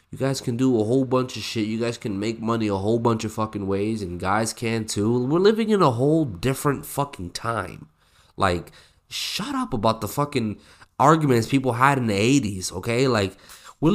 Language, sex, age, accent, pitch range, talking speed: English, male, 20-39, American, 95-135 Hz, 200 wpm